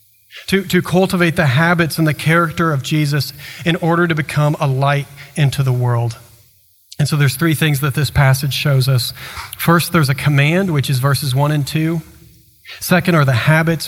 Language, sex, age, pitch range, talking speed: English, male, 40-59, 130-165 Hz, 185 wpm